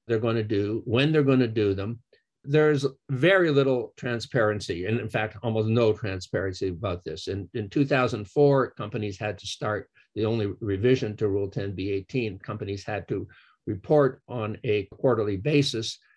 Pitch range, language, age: 105-130 Hz, English, 50-69